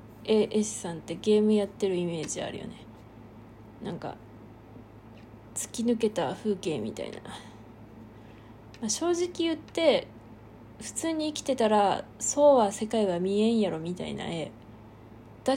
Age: 20-39